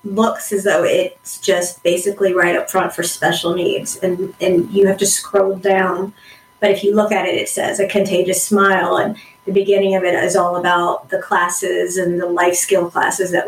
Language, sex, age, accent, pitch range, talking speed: English, female, 30-49, American, 185-200 Hz, 205 wpm